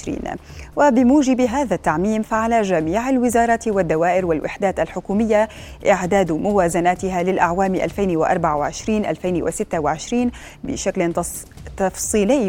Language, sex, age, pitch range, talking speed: Arabic, female, 20-39, 175-215 Hz, 70 wpm